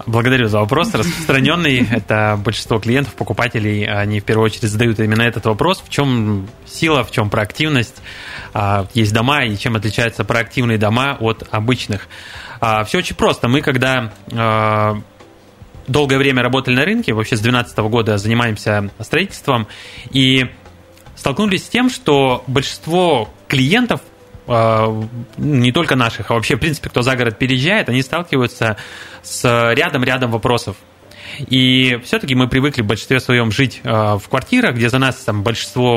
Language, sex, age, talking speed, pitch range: Russian, male, 20-39, 140 wpm, 110-135 Hz